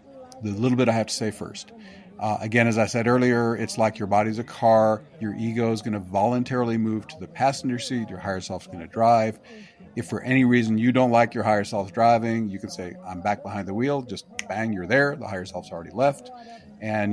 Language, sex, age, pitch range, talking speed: English, male, 50-69, 100-125 Hz, 235 wpm